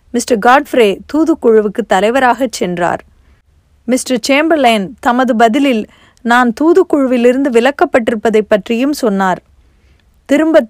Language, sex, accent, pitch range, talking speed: Tamil, female, native, 215-265 Hz, 85 wpm